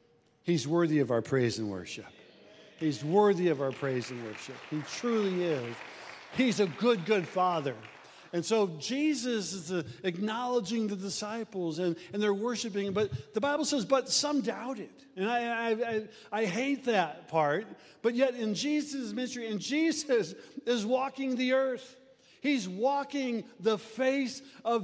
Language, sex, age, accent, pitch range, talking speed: English, male, 50-69, American, 190-255 Hz, 150 wpm